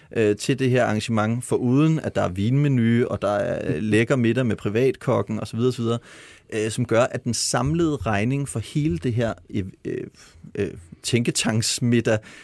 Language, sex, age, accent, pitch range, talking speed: Danish, male, 30-49, native, 110-135 Hz, 155 wpm